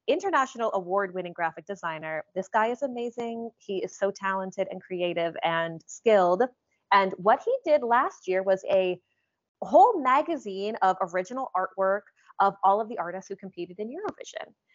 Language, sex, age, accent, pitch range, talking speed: English, female, 20-39, American, 190-240 Hz, 155 wpm